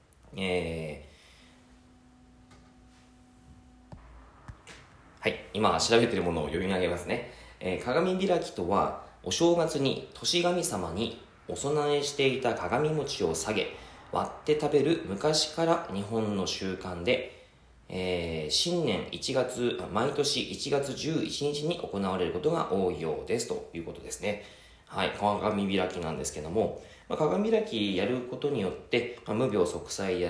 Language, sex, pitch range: Japanese, male, 90-150 Hz